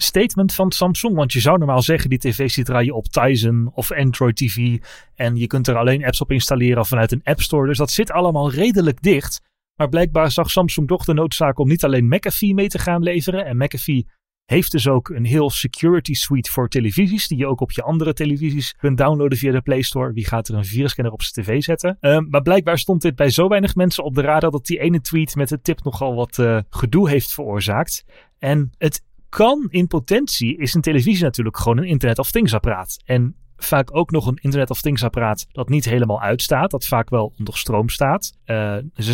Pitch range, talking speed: 120-155 Hz, 220 wpm